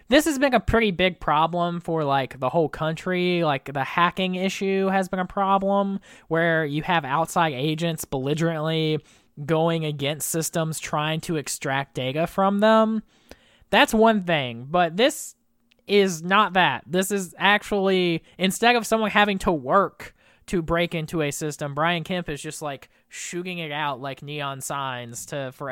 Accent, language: American, English